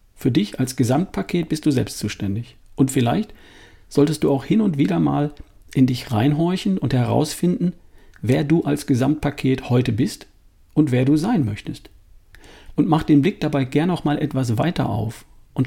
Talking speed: 170 wpm